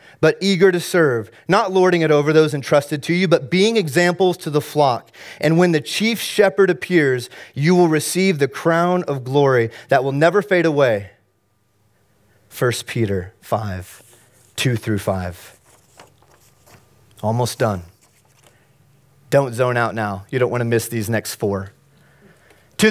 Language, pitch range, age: English, 115-185 Hz, 30-49